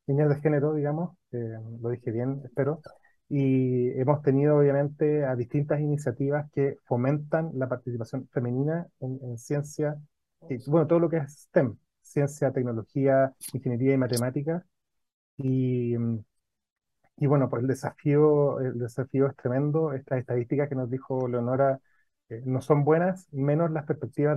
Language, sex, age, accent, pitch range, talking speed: Spanish, male, 30-49, Argentinian, 130-150 Hz, 145 wpm